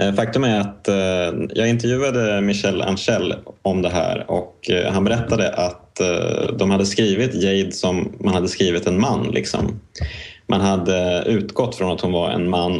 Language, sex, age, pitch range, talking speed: Swedish, male, 20-39, 90-105 Hz, 160 wpm